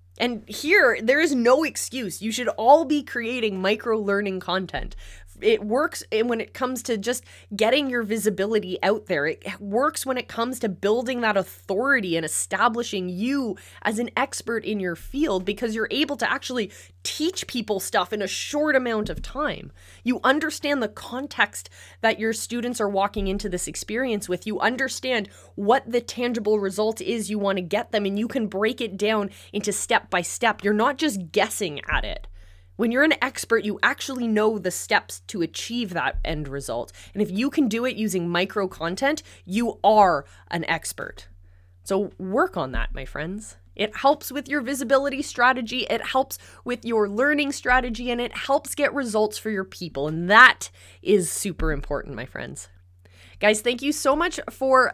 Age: 20-39